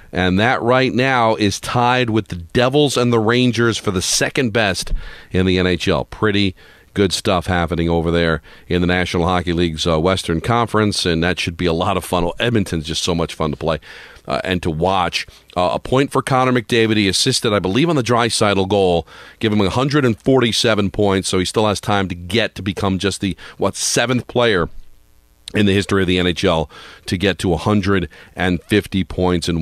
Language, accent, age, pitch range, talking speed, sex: English, American, 40-59, 90-115 Hz, 195 wpm, male